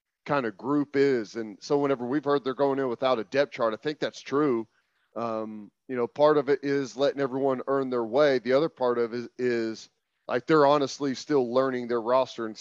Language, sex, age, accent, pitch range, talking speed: English, male, 40-59, American, 120-145 Hz, 225 wpm